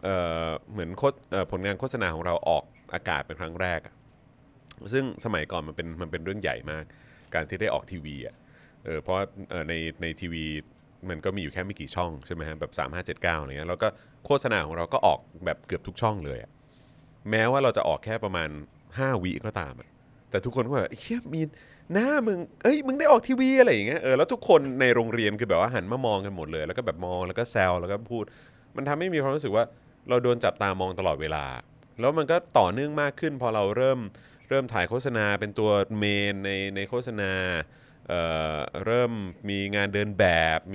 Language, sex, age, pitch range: Thai, male, 20-39, 90-125 Hz